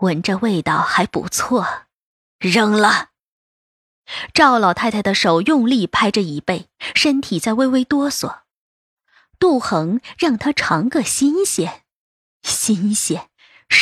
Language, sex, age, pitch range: Chinese, female, 20-39, 180-285 Hz